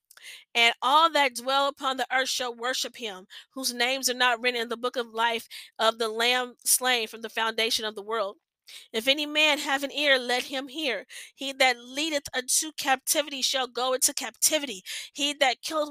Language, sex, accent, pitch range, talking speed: English, female, American, 245-290 Hz, 190 wpm